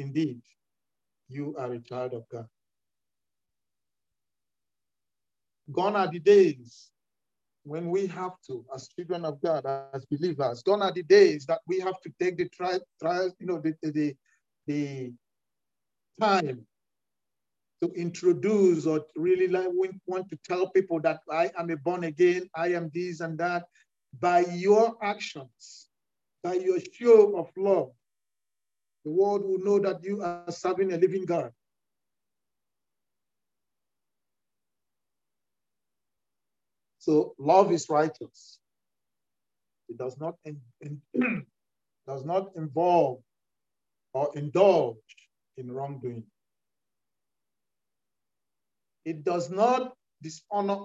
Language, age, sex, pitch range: English, 50-69, male, 135-190 Hz